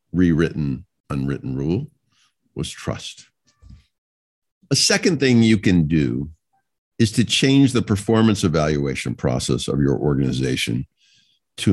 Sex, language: male, English